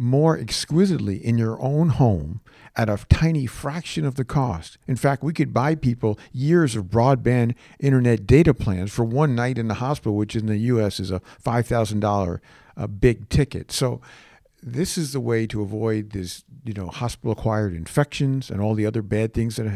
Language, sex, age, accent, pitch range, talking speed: English, male, 50-69, American, 105-135 Hz, 180 wpm